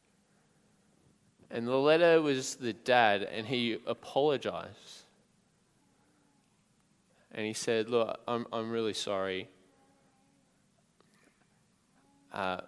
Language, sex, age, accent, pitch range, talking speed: English, male, 20-39, Australian, 95-120 Hz, 85 wpm